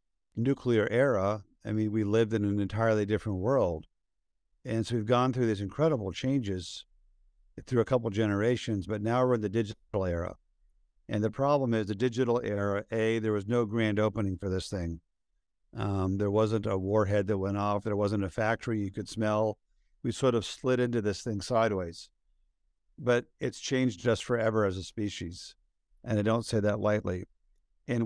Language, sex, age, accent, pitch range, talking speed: English, male, 50-69, American, 100-115 Hz, 180 wpm